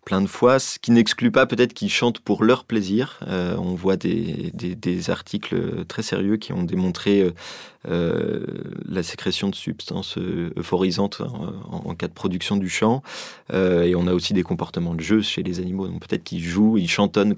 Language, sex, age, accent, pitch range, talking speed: French, male, 30-49, French, 95-110 Hz, 205 wpm